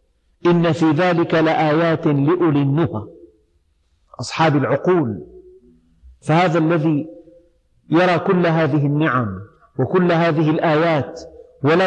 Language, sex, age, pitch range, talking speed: Arabic, male, 50-69, 135-180 Hz, 90 wpm